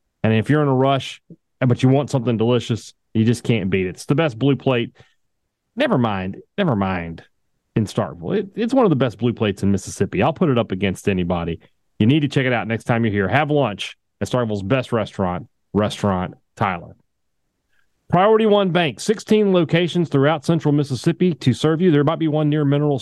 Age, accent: 40-59, American